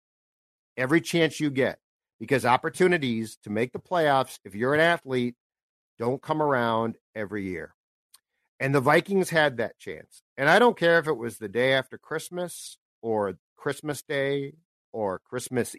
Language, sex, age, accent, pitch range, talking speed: English, male, 50-69, American, 120-150 Hz, 155 wpm